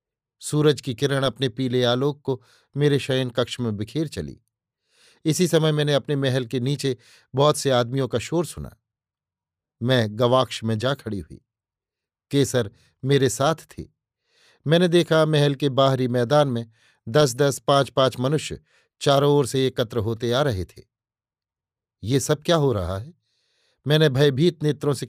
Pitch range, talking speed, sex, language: 115-145 Hz, 160 wpm, male, Hindi